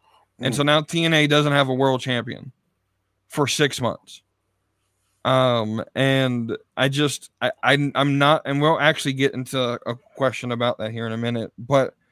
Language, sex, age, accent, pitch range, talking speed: English, male, 20-39, American, 120-145 Hz, 160 wpm